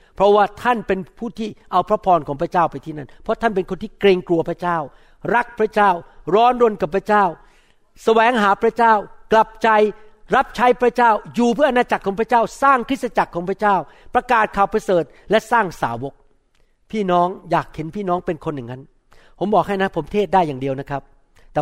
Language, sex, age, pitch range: Thai, male, 60-79, 155-215 Hz